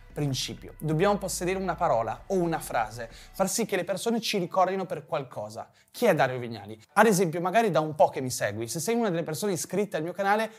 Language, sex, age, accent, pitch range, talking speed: Italian, male, 20-39, native, 150-205 Hz, 220 wpm